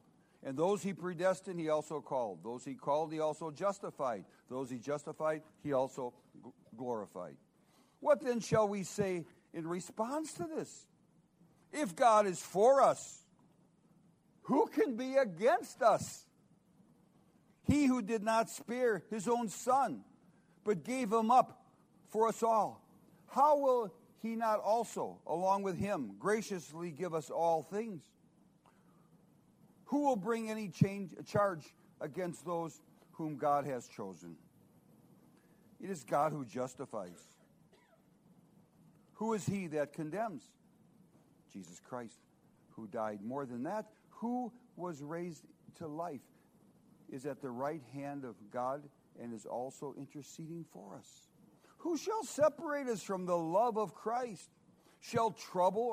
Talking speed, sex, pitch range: 130 wpm, male, 155-225 Hz